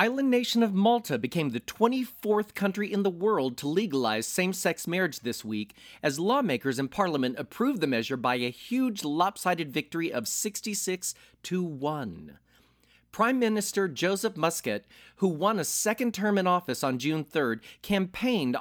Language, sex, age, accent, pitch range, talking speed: English, male, 40-59, American, 125-200 Hz, 155 wpm